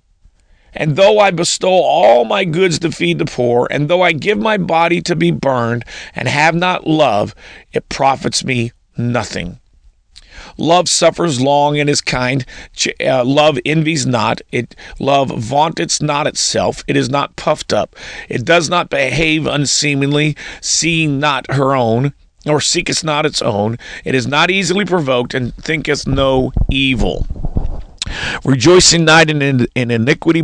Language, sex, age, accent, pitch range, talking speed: English, male, 40-59, American, 120-155 Hz, 150 wpm